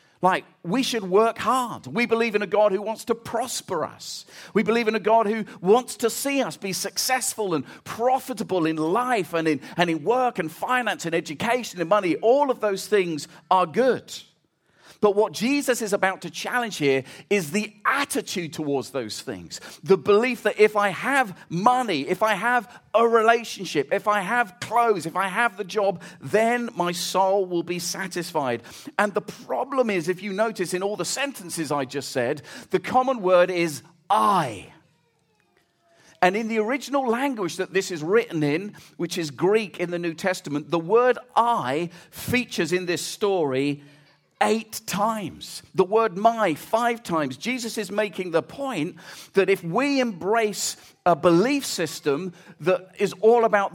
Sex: male